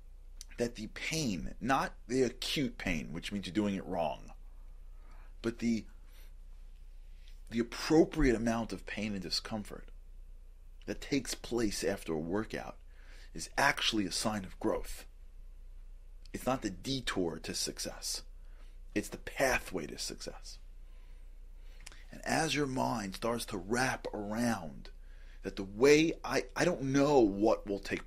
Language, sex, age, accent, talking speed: English, male, 40-59, American, 135 wpm